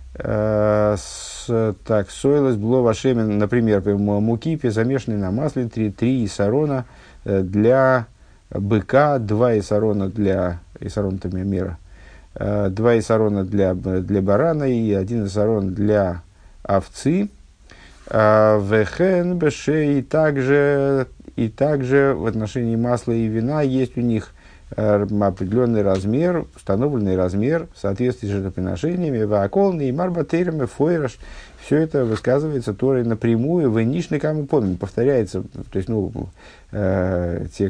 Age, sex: 50-69, male